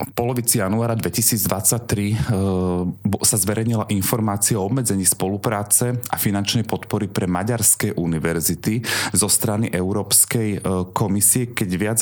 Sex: male